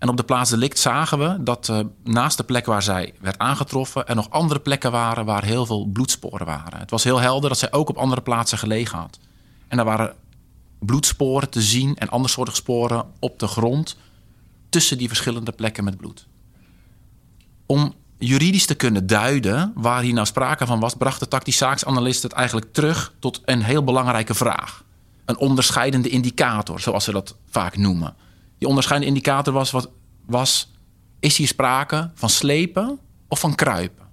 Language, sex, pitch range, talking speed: Dutch, male, 110-135 Hz, 180 wpm